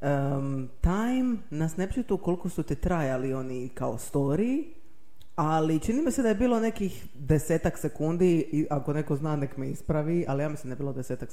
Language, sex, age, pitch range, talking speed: Croatian, female, 20-39, 135-180 Hz, 180 wpm